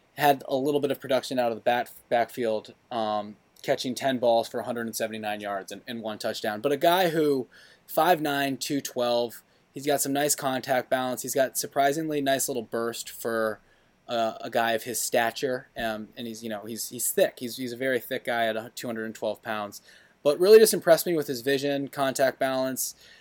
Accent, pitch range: American, 110-135 Hz